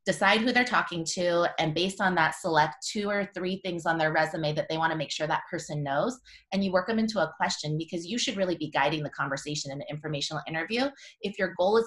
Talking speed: 250 wpm